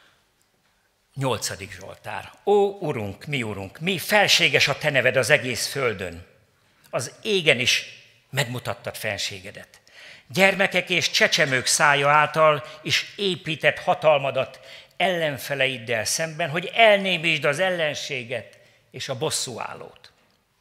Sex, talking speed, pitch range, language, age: male, 105 wpm, 120-170 Hz, Hungarian, 50-69